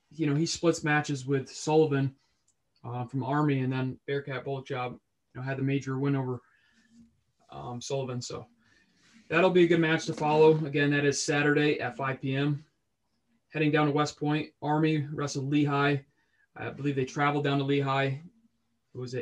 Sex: male